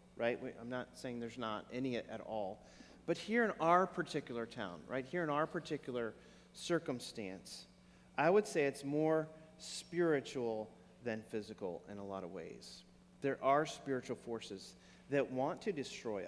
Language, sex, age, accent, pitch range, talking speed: English, male, 40-59, American, 130-175 Hz, 155 wpm